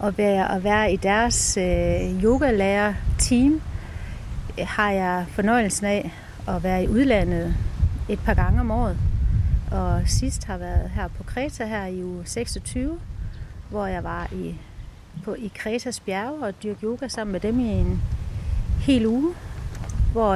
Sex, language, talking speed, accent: female, Danish, 155 wpm, native